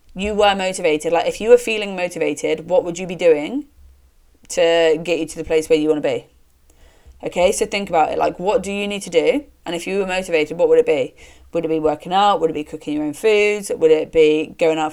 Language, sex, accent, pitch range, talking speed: English, female, British, 155-190 Hz, 255 wpm